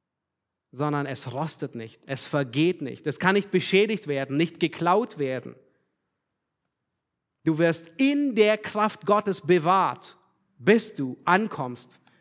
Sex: male